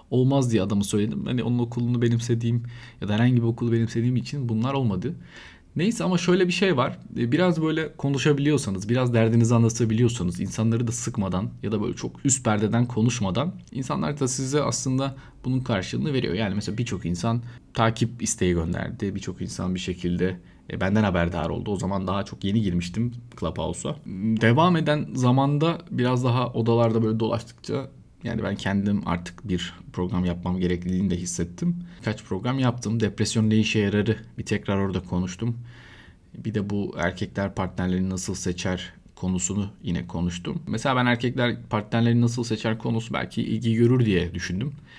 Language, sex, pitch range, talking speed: Turkish, male, 100-125 Hz, 155 wpm